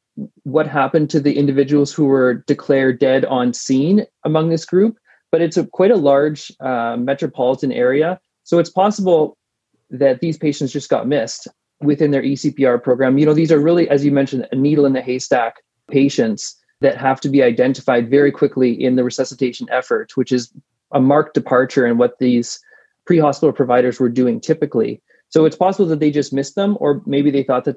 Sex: male